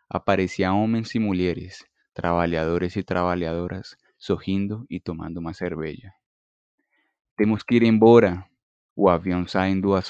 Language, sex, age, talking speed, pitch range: Spanish, male, 20-39, 145 wpm, 85-100 Hz